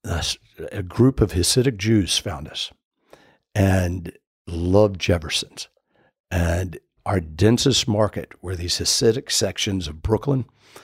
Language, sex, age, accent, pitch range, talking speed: English, male, 60-79, American, 95-115 Hz, 110 wpm